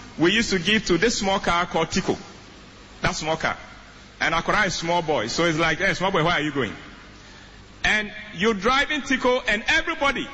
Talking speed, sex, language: 205 wpm, male, English